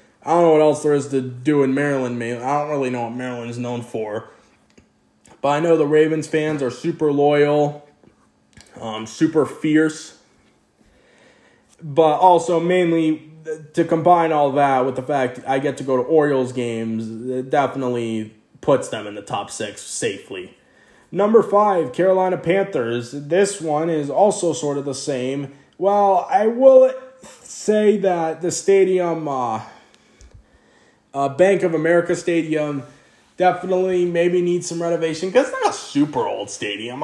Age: 20-39